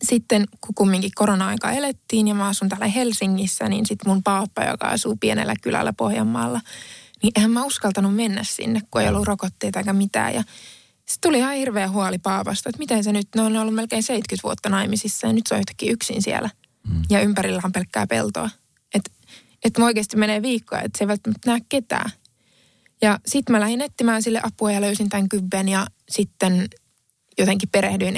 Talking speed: 175 wpm